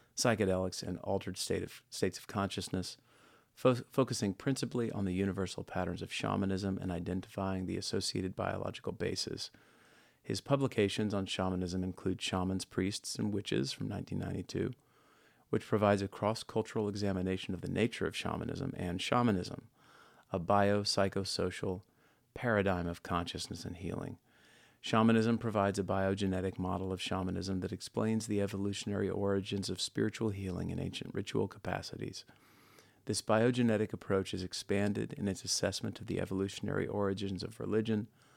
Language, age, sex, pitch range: English, 40-59, male, 95-110 Hz